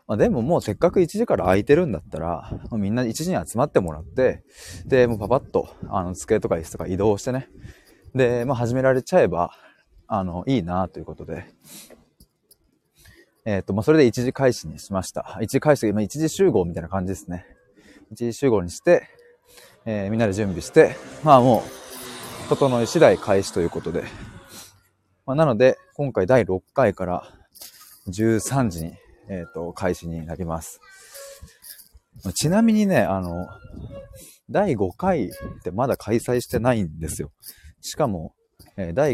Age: 20-39